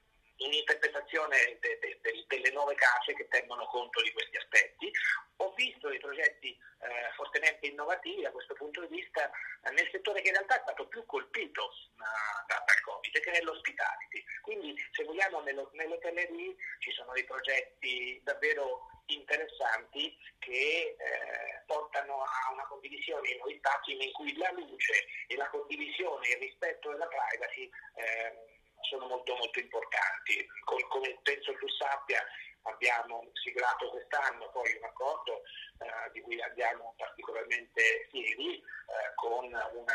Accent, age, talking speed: native, 40-59, 145 wpm